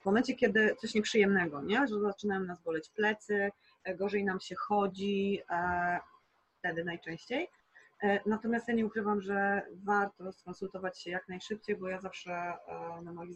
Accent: native